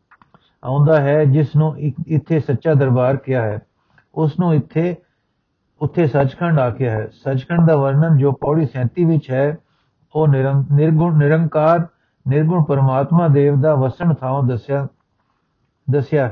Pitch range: 135-155 Hz